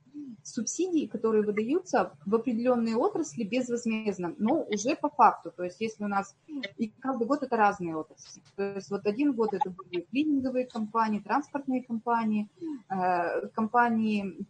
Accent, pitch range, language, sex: native, 200-250 Hz, Russian, female